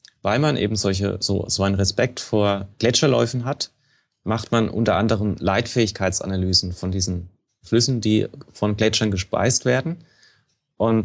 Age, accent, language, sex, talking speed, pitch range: 30-49, German, German, male, 135 wpm, 100-120 Hz